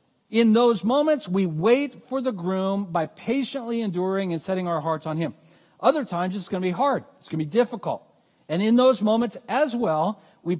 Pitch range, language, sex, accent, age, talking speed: 180-245 Hz, English, male, American, 50-69, 190 wpm